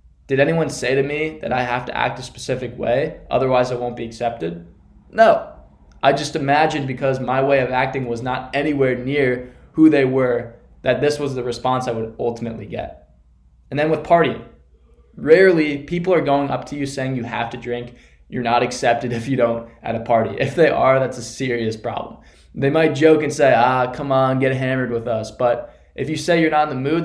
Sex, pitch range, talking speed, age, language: male, 120-145 Hz, 215 wpm, 20-39, English